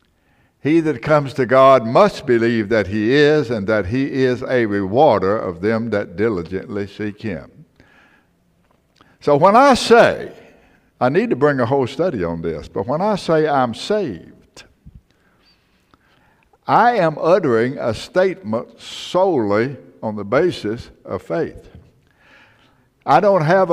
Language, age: English, 60-79